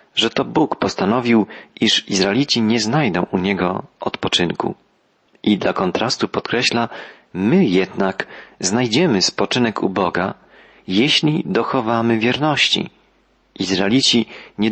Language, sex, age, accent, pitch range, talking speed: Polish, male, 40-59, native, 100-135 Hz, 105 wpm